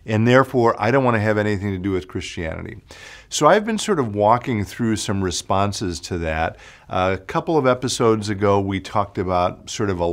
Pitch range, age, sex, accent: 90-115 Hz, 50-69, male, American